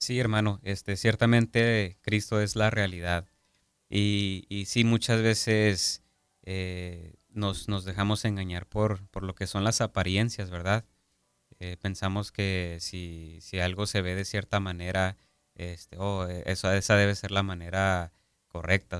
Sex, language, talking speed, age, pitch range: male, Spanish, 150 wpm, 30-49, 90-105 Hz